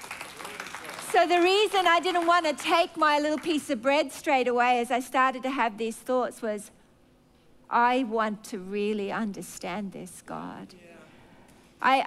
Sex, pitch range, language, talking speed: female, 240-330 Hz, English, 150 wpm